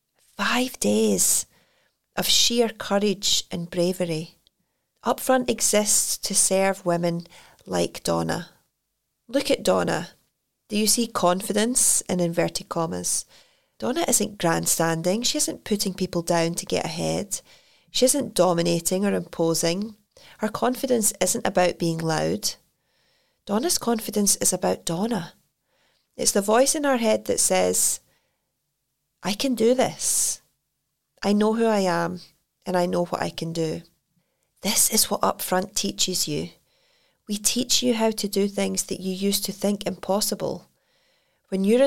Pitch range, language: 175-220 Hz, English